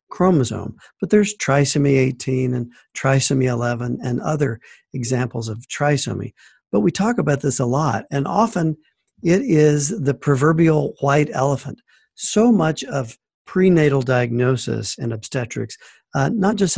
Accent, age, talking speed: American, 50-69, 135 wpm